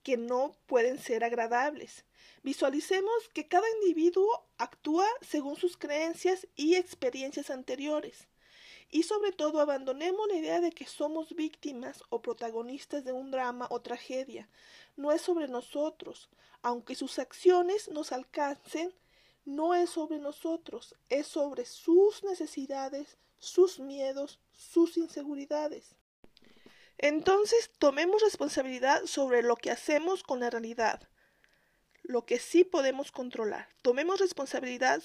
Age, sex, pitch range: 50-69, female, 260-350 Hz